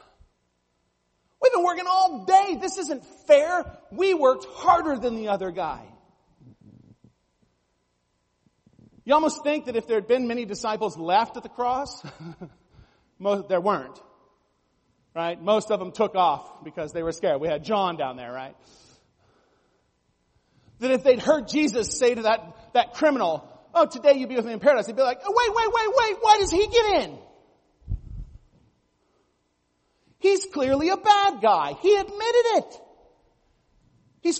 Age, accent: 40-59, American